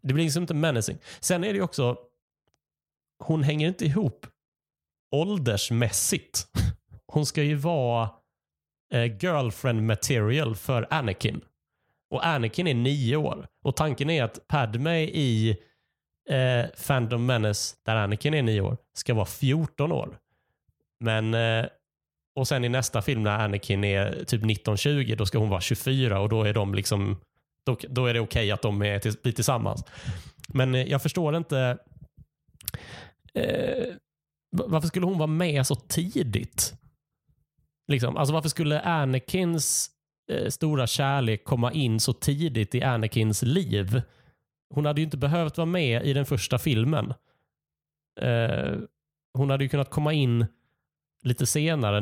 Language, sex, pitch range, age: Swedish, male, 110-145 Hz, 30-49